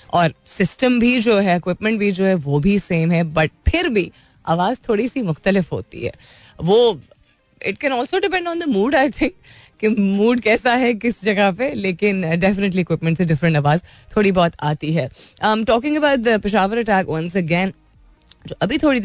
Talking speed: 180 wpm